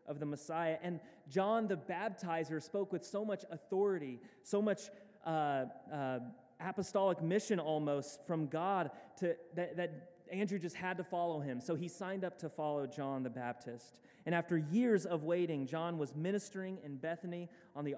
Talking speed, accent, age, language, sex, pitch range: 170 wpm, American, 30-49, English, male, 150-185 Hz